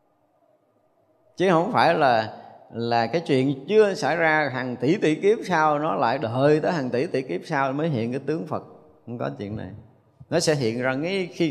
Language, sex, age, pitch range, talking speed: Vietnamese, male, 20-39, 120-165 Hz, 200 wpm